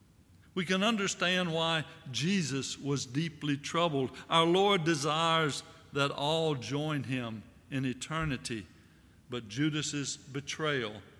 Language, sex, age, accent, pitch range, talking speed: English, male, 60-79, American, 110-160 Hz, 105 wpm